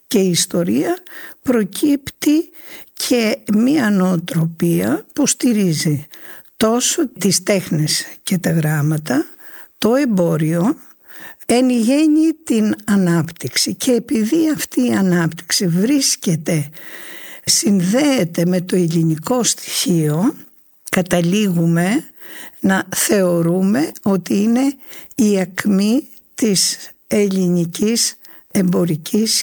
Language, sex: Greek, female